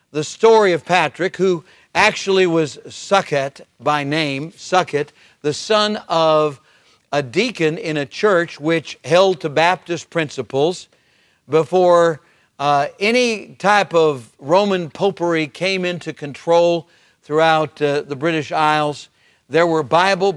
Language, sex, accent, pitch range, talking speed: English, male, American, 150-190 Hz, 125 wpm